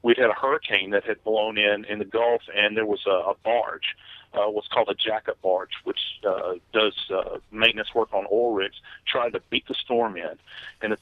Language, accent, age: English, American, 50-69